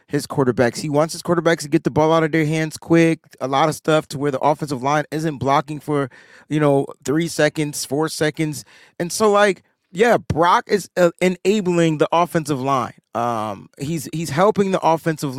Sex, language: male, English